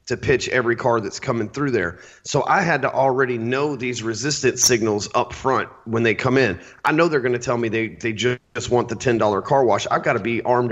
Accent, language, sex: American, English, male